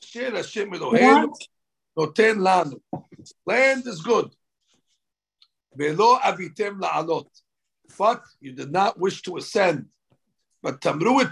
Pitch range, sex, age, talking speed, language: 170-220 Hz, male, 60-79, 80 wpm, English